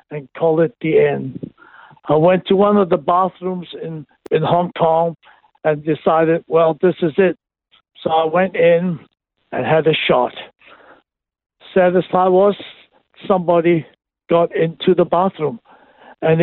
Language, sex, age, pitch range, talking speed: English, male, 60-79, 160-185 Hz, 145 wpm